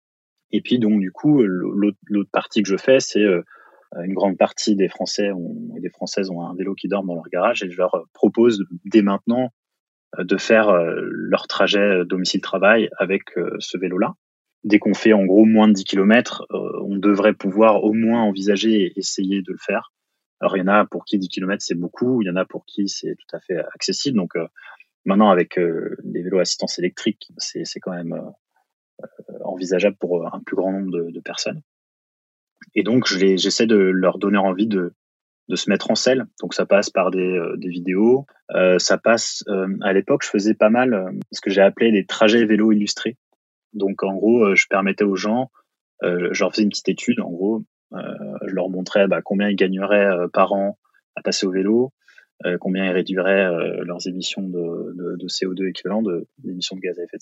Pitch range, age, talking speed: 95-105 Hz, 20-39, 205 wpm